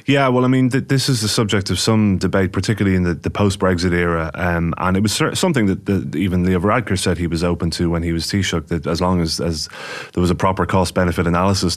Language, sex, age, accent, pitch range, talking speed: English, male, 30-49, British, 80-95 Hz, 245 wpm